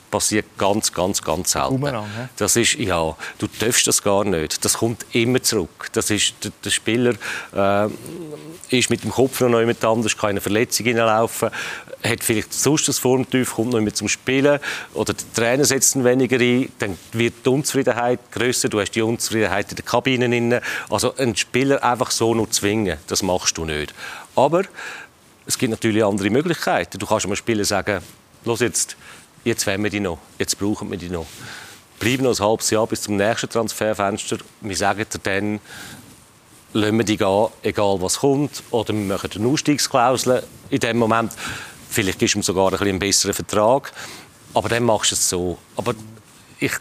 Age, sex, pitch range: 40-59, male, 100-120 Hz